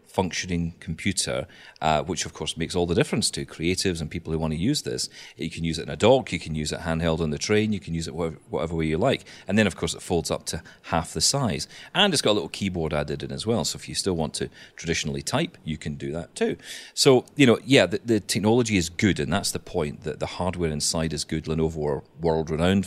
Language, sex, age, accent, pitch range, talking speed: English, male, 40-59, British, 80-105 Hz, 255 wpm